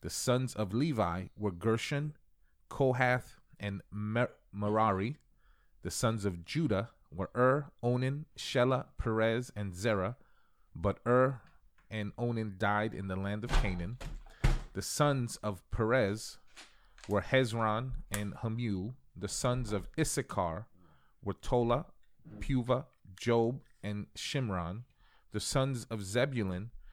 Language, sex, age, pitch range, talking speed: English, male, 30-49, 100-125 Hz, 120 wpm